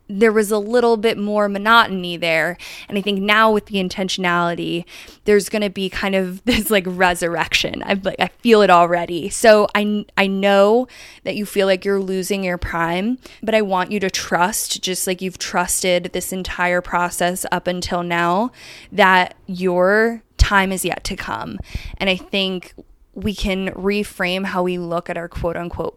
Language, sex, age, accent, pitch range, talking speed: English, female, 20-39, American, 175-205 Hz, 180 wpm